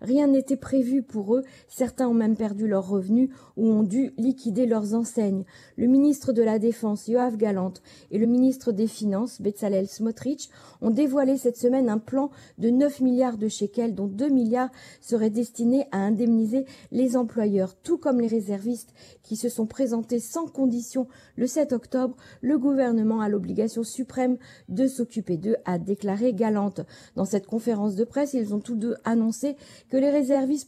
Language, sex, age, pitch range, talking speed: Italian, female, 40-59, 215-260 Hz, 170 wpm